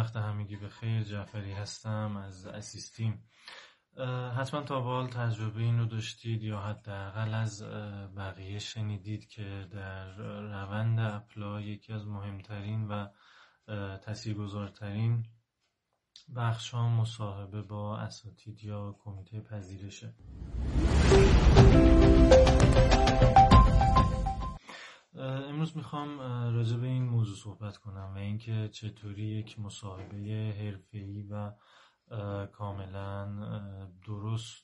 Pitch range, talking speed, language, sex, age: 100-115 Hz, 95 wpm, Persian, male, 30-49